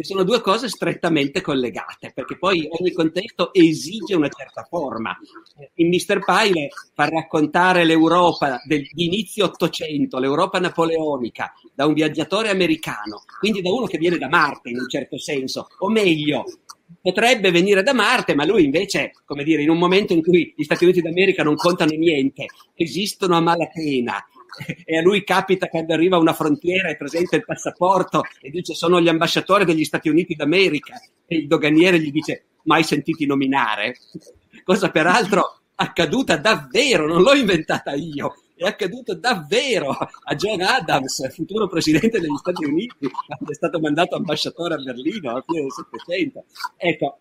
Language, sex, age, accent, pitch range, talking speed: Italian, male, 50-69, native, 155-190 Hz, 155 wpm